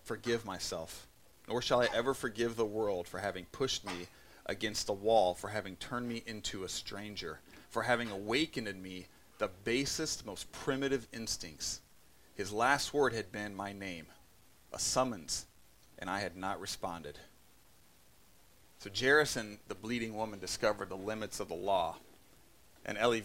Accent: American